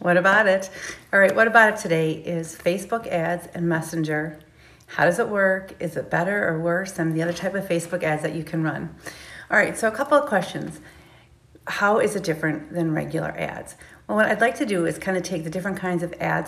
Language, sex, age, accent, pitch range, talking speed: English, female, 40-59, American, 160-185 Hz, 230 wpm